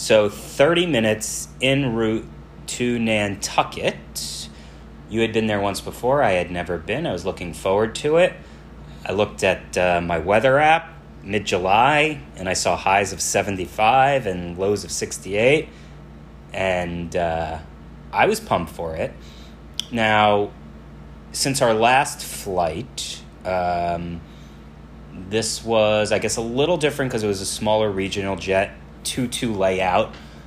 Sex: male